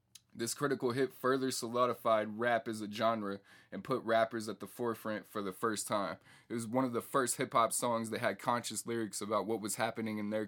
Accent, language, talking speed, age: American, English, 210 wpm, 20-39